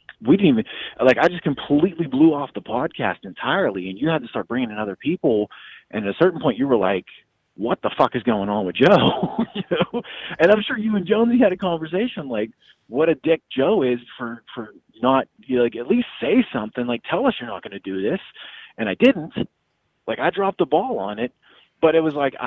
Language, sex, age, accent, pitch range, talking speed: English, male, 30-49, American, 120-195 Hz, 220 wpm